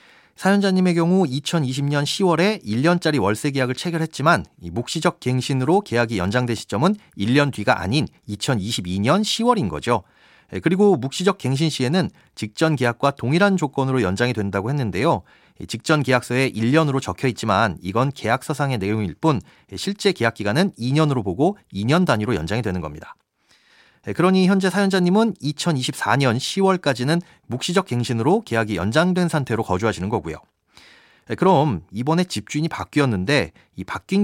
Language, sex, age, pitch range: Korean, male, 40-59, 115-175 Hz